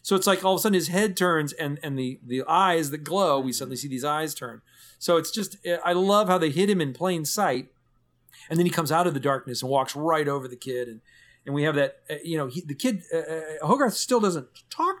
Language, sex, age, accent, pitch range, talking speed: English, male, 40-59, American, 135-175 Hz, 255 wpm